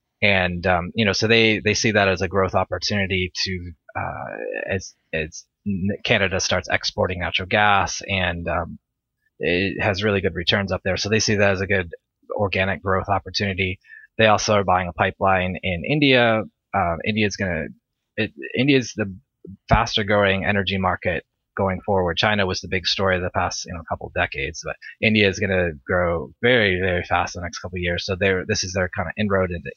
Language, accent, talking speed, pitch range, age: English, American, 200 wpm, 90-105 Hz, 20-39